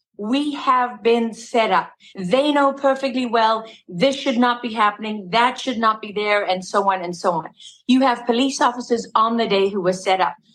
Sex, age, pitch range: female, 50-69, 210-270 Hz